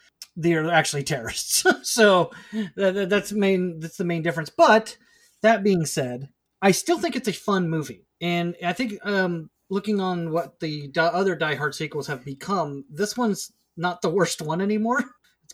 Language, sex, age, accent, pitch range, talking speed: English, male, 30-49, American, 140-190 Hz, 165 wpm